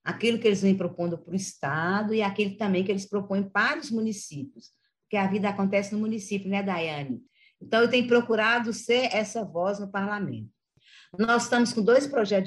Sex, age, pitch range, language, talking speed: female, 50-69, 170-210 Hz, Portuguese, 190 wpm